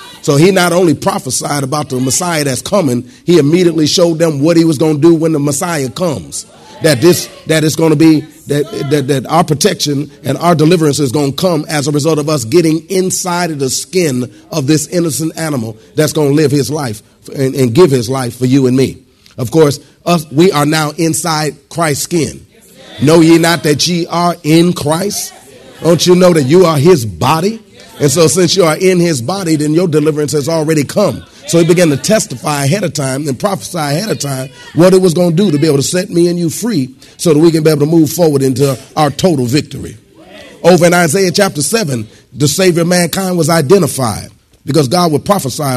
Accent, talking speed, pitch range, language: American, 220 wpm, 135-170 Hz, English